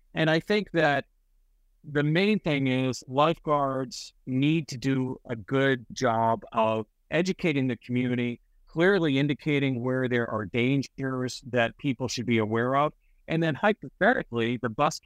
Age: 50-69